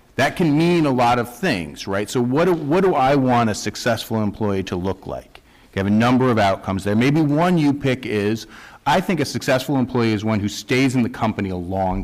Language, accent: English, American